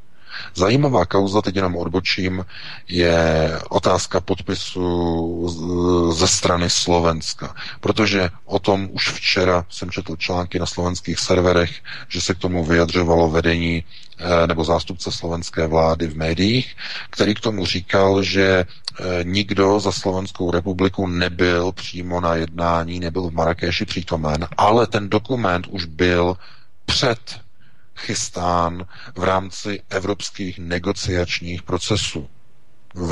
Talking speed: 115 wpm